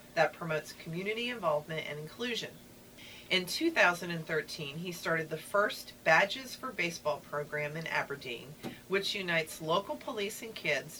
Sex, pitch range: female, 150-195 Hz